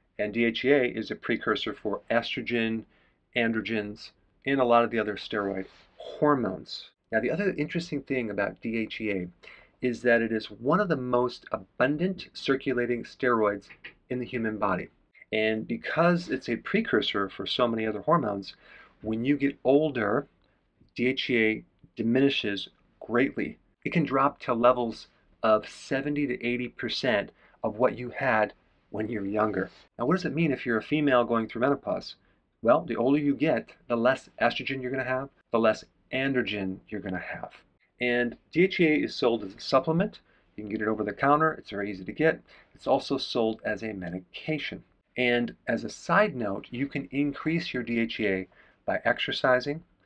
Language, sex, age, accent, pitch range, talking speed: English, male, 40-59, American, 110-140 Hz, 165 wpm